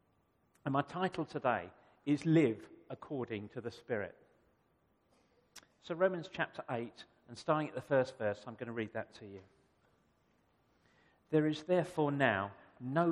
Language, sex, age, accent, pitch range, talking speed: English, male, 50-69, British, 115-150 Hz, 145 wpm